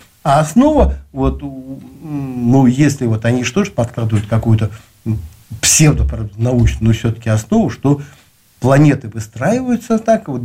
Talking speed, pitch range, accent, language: 110 wpm, 110-140 Hz, native, Russian